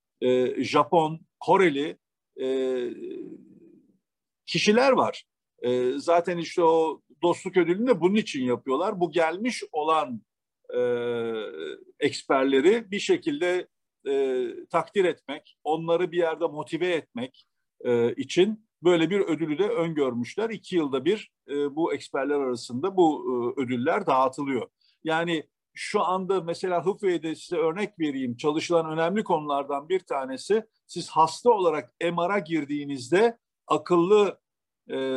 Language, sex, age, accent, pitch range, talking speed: Turkish, male, 50-69, native, 145-205 Hz, 115 wpm